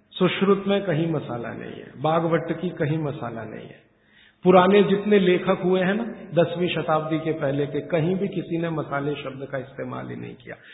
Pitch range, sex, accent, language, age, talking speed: 145-185 Hz, male, native, Hindi, 50-69, 190 wpm